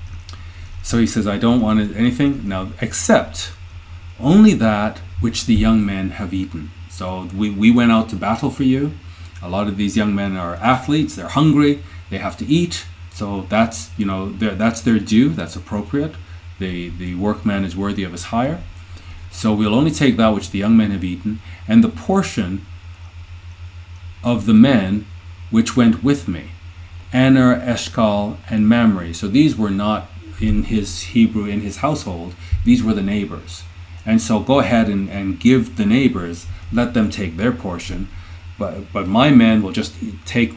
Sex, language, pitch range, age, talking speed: male, English, 85-110 Hz, 40-59, 175 wpm